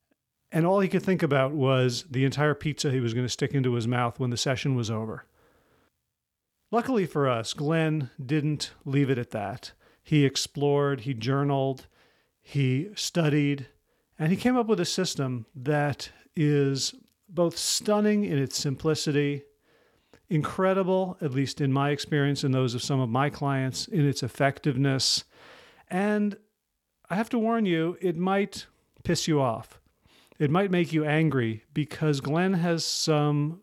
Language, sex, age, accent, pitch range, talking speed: English, male, 40-59, American, 130-160 Hz, 155 wpm